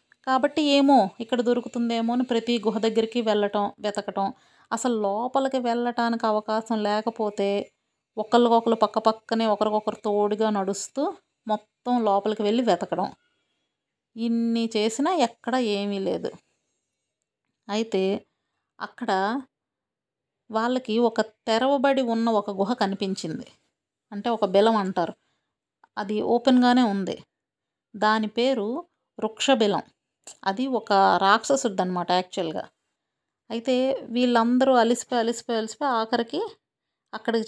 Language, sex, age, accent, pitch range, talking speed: Telugu, female, 30-49, native, 205-245 Hz, 90 wpm